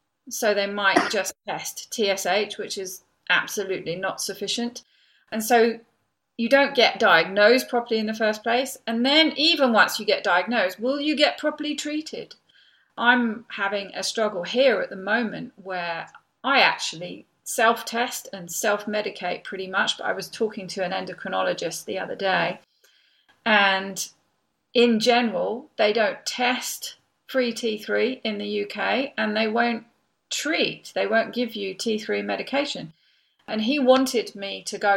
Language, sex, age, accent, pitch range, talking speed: English, female, 40-59, British, 190-245 Hz, 150 wpm